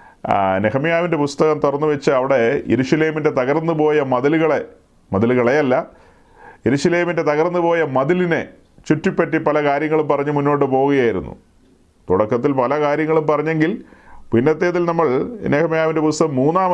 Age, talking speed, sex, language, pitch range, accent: 40-59, 110 wpm, male, Malayalam, 125-155 Hz, native